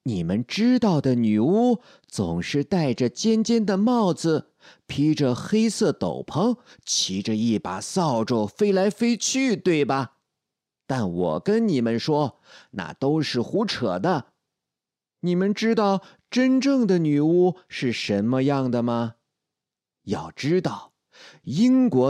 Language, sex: Chinese, male